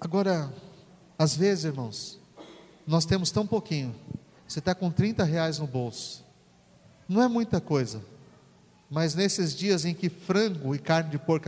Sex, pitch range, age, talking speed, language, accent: male, 140-185 Hz, 50-69, 150 wpm, Portuguese, Brazilian